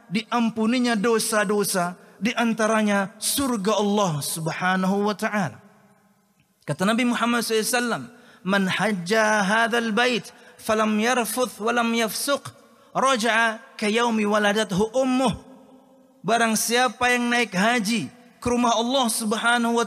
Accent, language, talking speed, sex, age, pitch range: native, Indonesian, 105 wpm, male, 30-49, 215-245 Hz